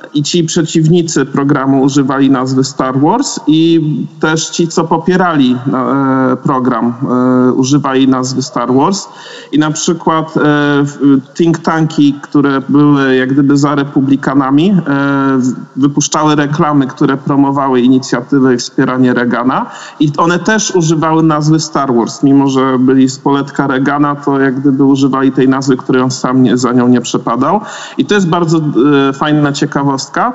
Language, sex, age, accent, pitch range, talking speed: Polish, male, 40-59, native, 135-160 Hz, 140 wpm